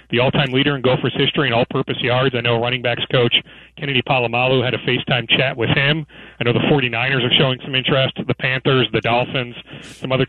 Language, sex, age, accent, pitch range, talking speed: English, male, 40-59, American, 125-160 Hz, 210 wpm